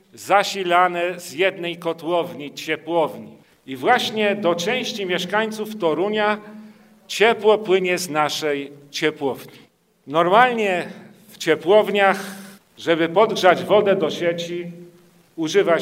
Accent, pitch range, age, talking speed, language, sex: native, 165-205 Hz, 40-59, 95 wpm, Polish, male